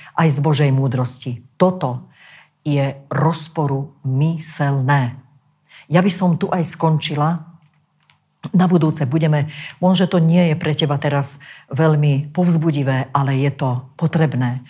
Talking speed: 120 wpm